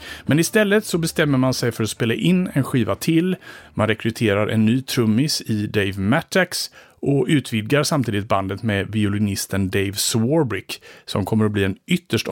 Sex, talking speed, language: male, 170 wpm, English